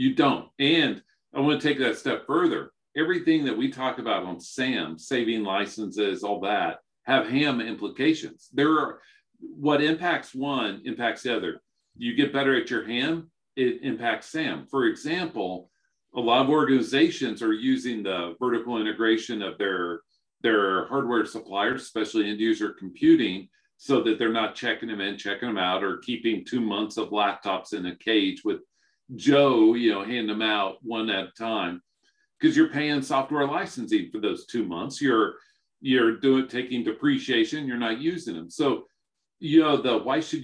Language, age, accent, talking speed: English, 50-69, American, 170 wpm